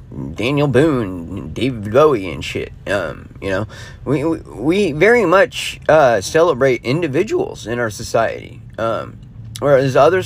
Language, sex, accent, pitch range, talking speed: English, male, American, 115-150 Hz, 135 wpm